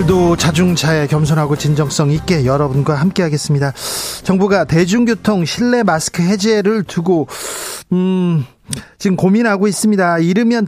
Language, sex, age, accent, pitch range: Korean, male, 40-59, native, 155-210 Hz